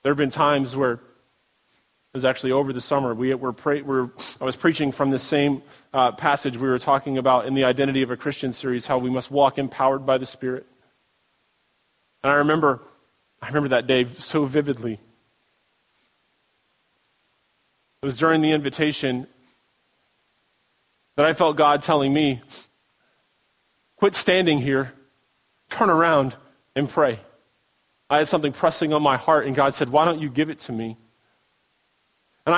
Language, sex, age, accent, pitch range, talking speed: English, male, 30-49, American, 130-155 Hz, 160 wpm